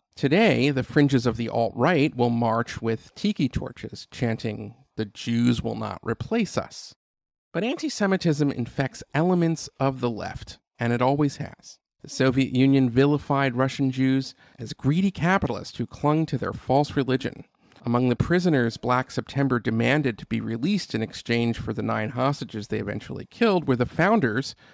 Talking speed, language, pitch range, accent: 160 wpm, English, 115-150 Hz, American